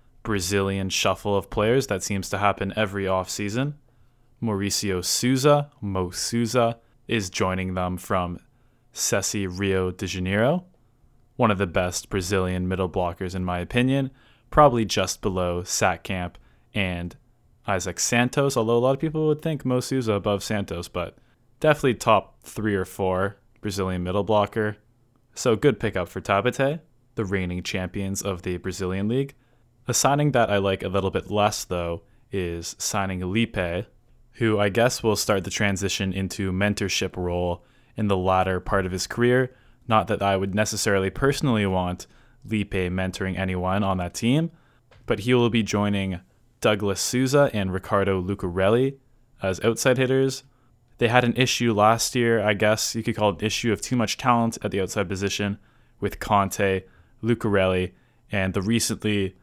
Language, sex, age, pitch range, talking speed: English, male, 20-39, 95-120 Hz, 160 wpm